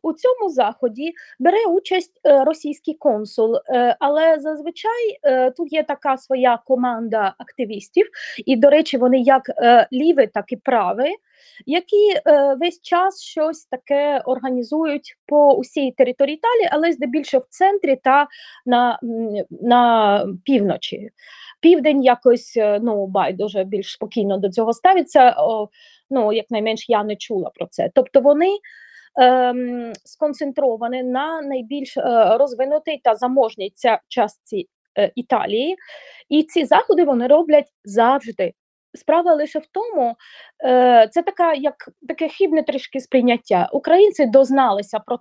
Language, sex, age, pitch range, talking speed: Ukrainian, female, 20-39, 245-320 Hz, 120 wpm